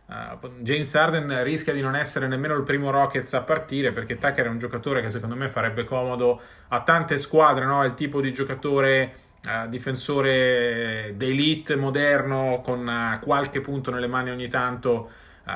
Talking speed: 175 wpm